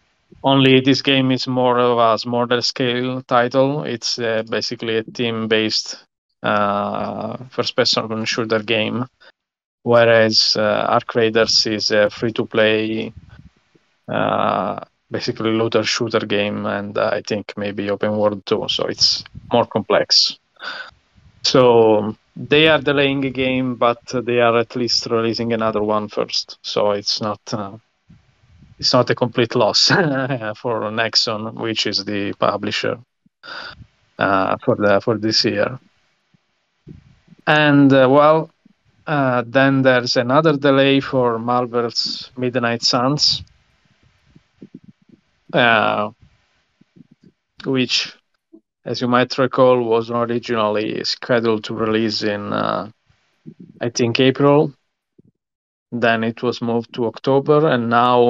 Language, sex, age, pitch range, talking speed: English, male, 20-39, 110-130 Hz, 120 wpm